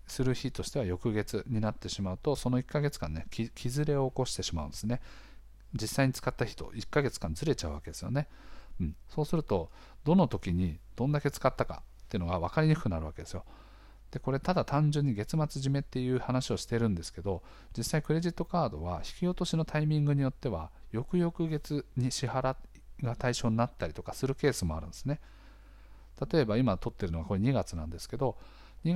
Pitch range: 95-145 Hz